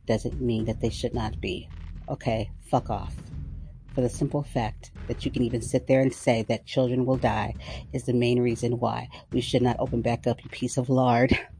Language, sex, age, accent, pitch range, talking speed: English, female, 40-59, American, 105-140 Hz, 210 wpm